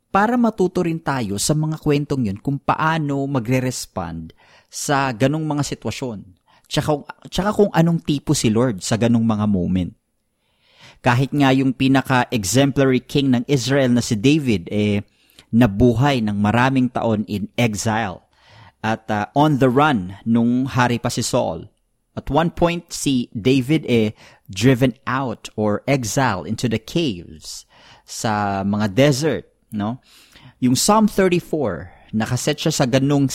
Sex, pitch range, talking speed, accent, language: male, 110-145 Hz, 135 wpm, native, Filipino